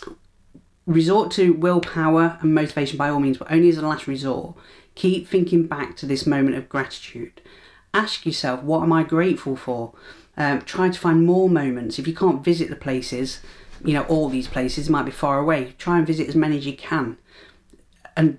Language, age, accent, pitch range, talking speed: English, 40-59, British, 135-165 Hz, 195 wpm